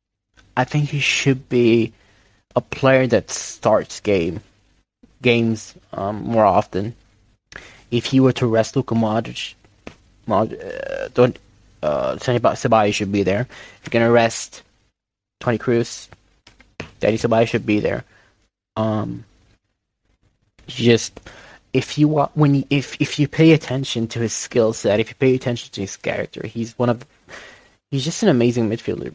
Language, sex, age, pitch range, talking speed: English, male, 20-39, 110-125 Hz, 145 wpm